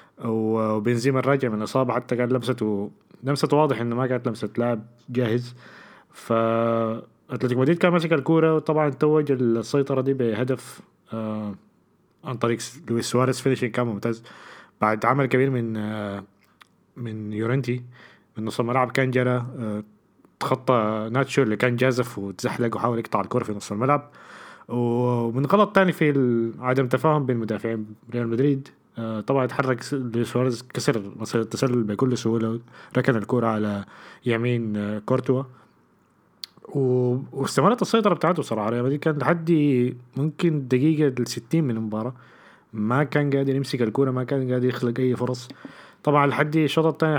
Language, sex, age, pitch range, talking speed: Arabic, male, 20-39, 115-140 Hz, 145 wpm